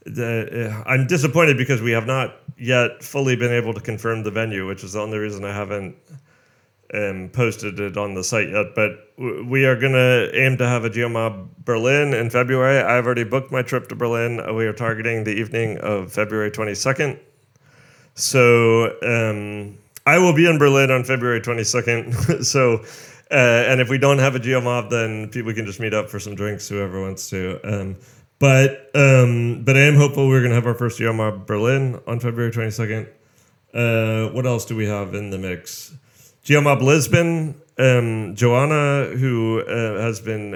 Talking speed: 185 wpm